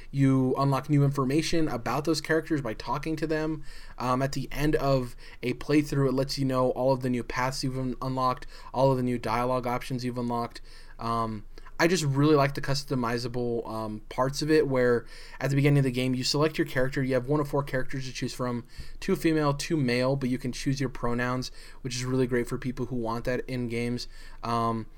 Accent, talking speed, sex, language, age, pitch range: American, 215 wpm, male, English, 10-29, 120-140 Hz